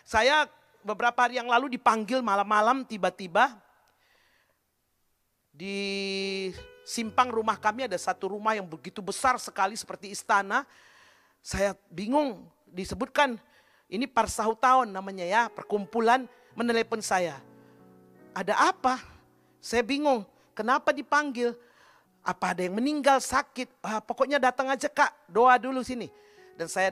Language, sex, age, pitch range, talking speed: Indonesian, male, 40-59, 190-255 Hz, 120 wpm